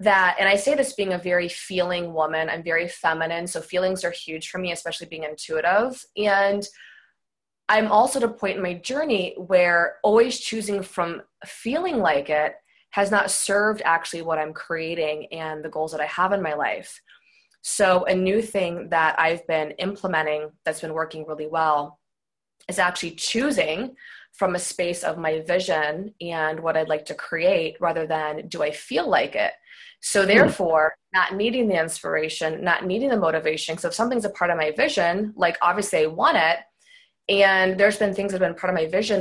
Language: English